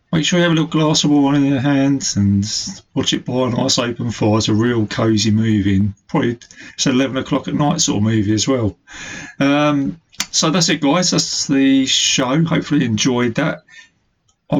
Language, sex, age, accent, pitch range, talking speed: English, male, 30-49, British, 110-145 Hz, 210 wpm